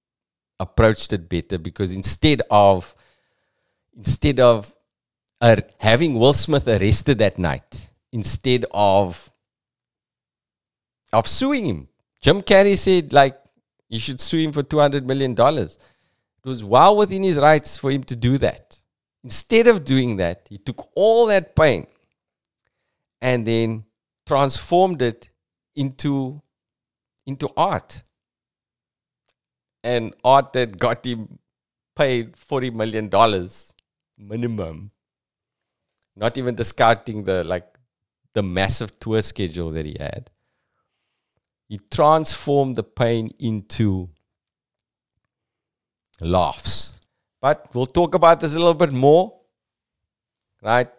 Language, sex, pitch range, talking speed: English, male, 100-135 Hz, 115 wpm